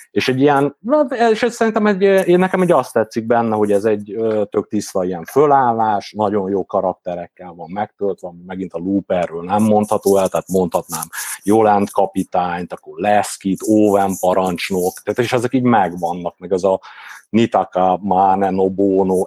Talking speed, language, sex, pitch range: 155 wpm, Hungarian, male, 95-125 Hz